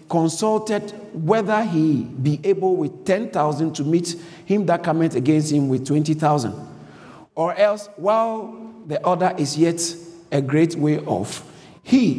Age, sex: 50-69, male